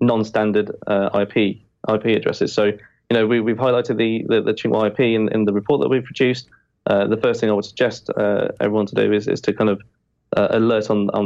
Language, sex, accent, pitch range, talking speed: English, male, British, 105-115 Hz, 225 wpm